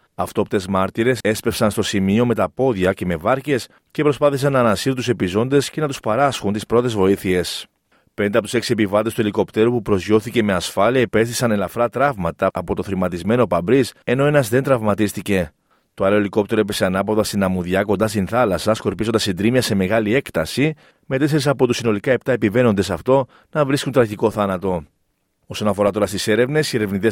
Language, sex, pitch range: Greek, male, 100-120 Hz